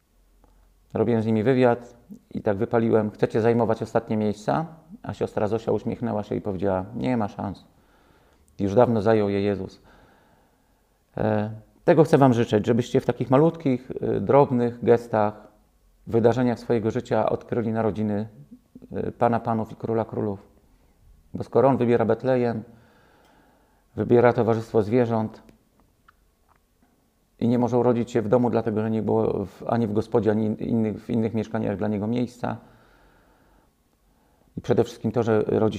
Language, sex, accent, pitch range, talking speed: Polish, male, native, 100-120 Hz, 145 wpm